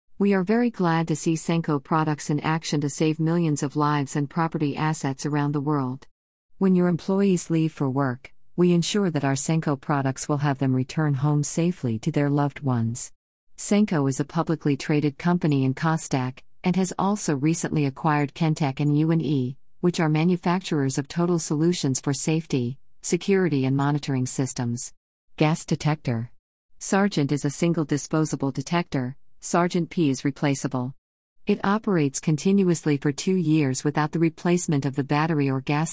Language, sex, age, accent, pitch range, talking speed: English, female, 50-69, American, 140-165 Hz, 160 wpm